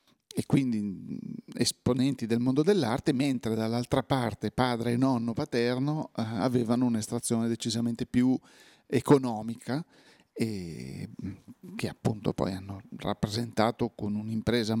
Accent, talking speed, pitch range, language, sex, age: native, 105 wpm, 115-150 Hz, Italian, male, 40-59